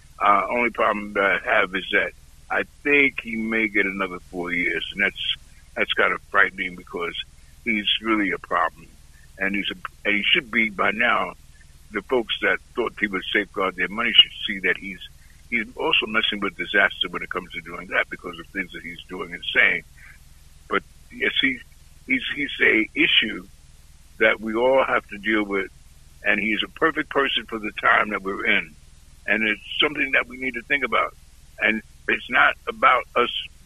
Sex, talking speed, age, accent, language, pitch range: male, 190 wpm, 60-79, American, English, 75-120 Hz